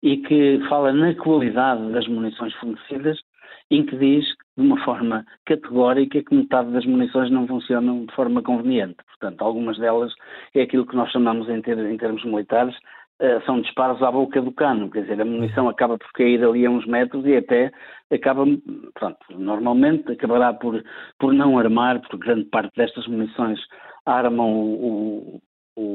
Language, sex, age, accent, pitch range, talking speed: Portuguese, male, 50-69, Portuguese, 115-140 Hz, 170 wpm